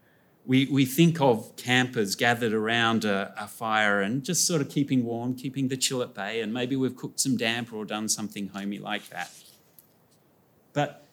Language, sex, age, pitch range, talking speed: English, male, 40-59, 115-160 Hz, 185 wpm